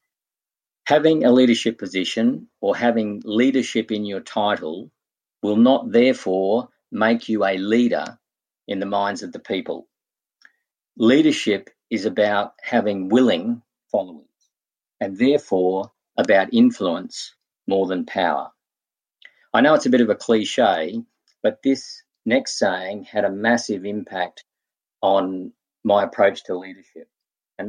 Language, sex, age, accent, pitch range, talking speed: English, male, 50-69, Australian, 100-150 Hz, 125 wpm